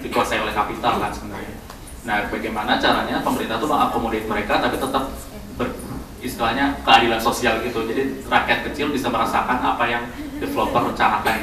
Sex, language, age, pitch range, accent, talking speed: male, Indonesian, 20-39, 110-125 Hz, native, 135 wpm